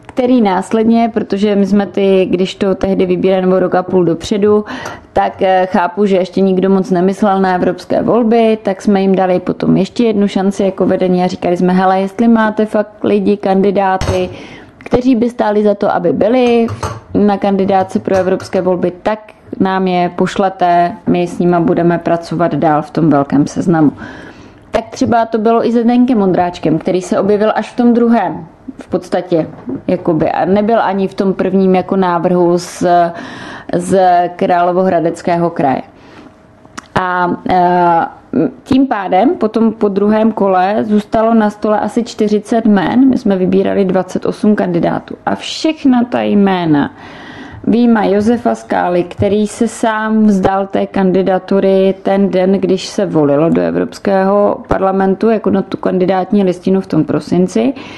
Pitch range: 185-215 Hz